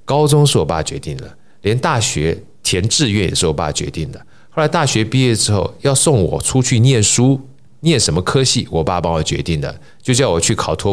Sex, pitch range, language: male, 85-135 Hz, Chinese